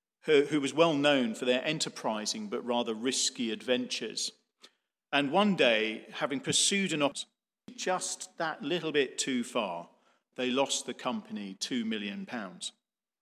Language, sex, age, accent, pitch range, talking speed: English, male, 40-59, British, 140-215 Hz, 135 wpm